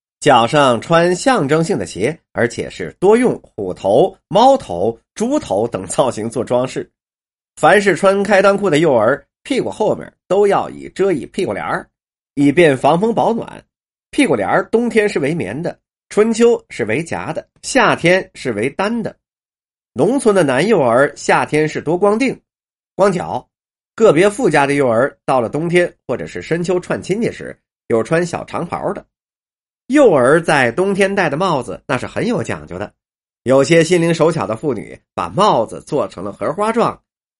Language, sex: Chinese, male